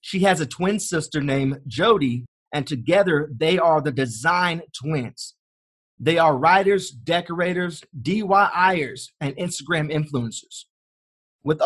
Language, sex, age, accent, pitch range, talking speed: English, male, 30-49, American, 145-185 Hz, 120 wpm